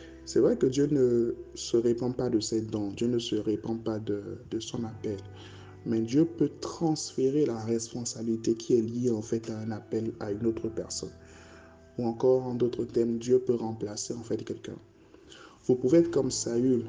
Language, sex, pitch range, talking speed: French, male, 105-125 Hz, 190 wpm